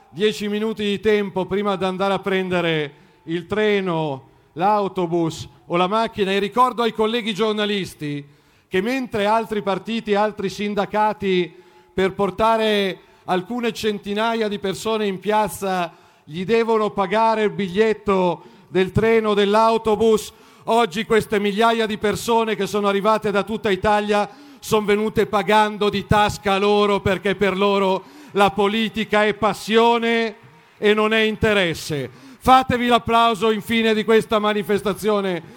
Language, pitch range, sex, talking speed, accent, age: Italian, 195-220 Hz, male, 130 wpm, native, 40-59